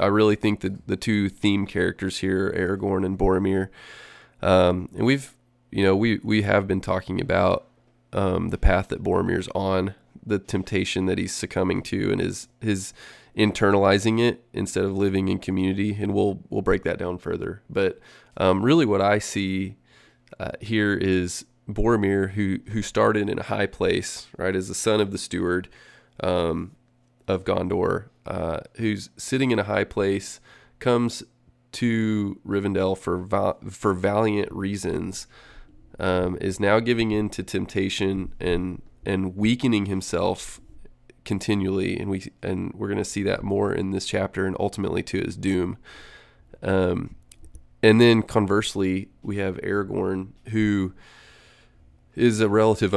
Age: 20-39